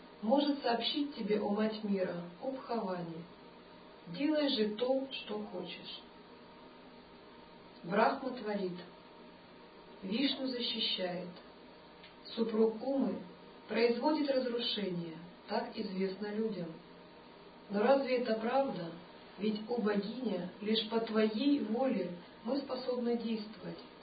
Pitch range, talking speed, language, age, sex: 190-240 Hz, 95 wpm, Russian, 40-59, male